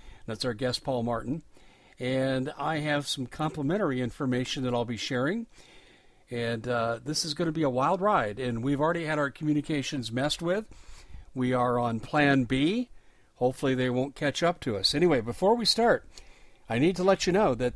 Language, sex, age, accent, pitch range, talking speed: English, male, 50-69, American, 130-170 Hz, 190 wpm